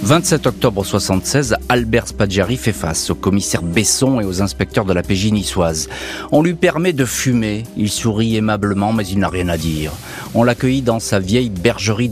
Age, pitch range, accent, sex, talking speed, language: 40-59, 95-125 Hz, French, male, 185 wpm, French